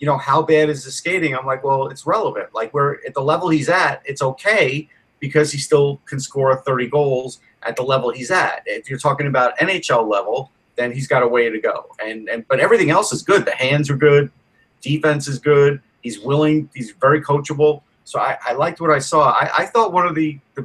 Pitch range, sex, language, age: 125-150 Hz, male, English, 30-49